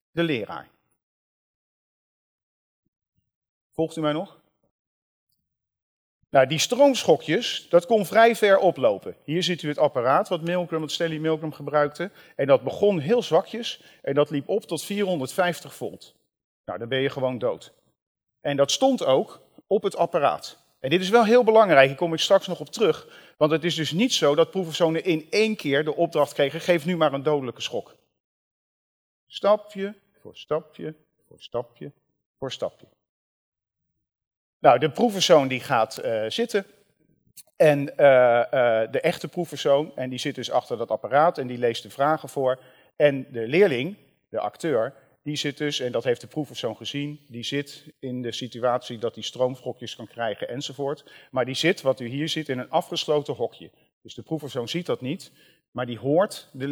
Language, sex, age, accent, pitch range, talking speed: Dutch, male, 40-59, Dutch, 130-175 Hz, 170 wpm